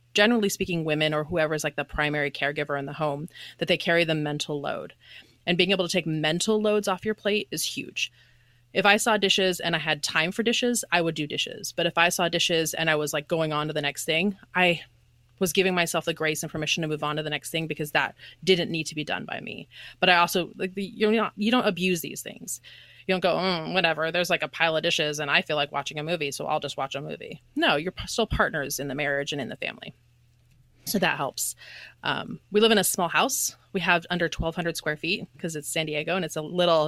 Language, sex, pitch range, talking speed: English, female, 150-180 Hz, 250 wpm